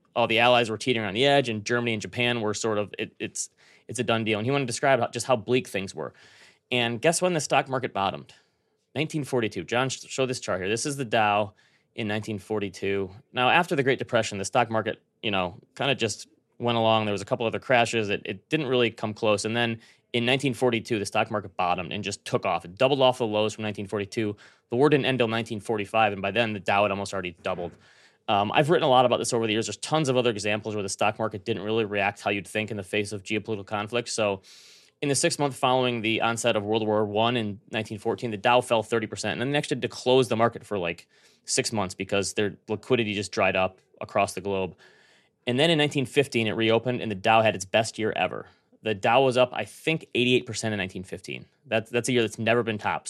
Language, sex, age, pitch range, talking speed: English, male, 20-39, 105-125 Hz, 240 wpm